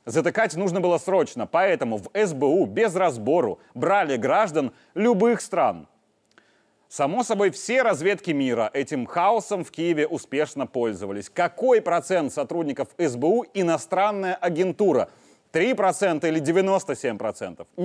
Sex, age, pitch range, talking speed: male, 30-49, 160-205 Hz, 110 wpm